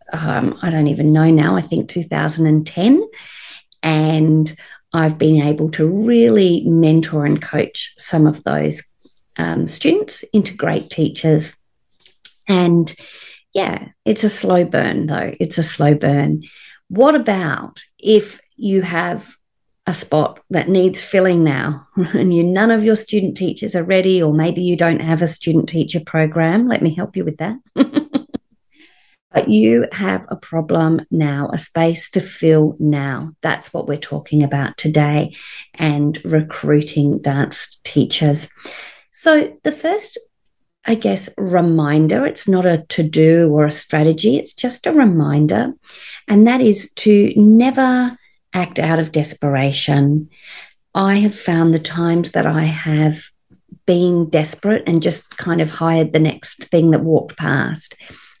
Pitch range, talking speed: 155-195 Hz, 145 wpm